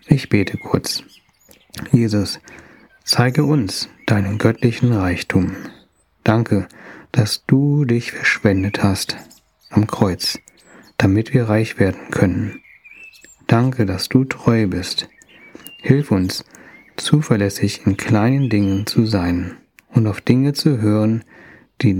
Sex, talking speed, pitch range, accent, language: male, 110 wpm, 100-125 Hz, German, German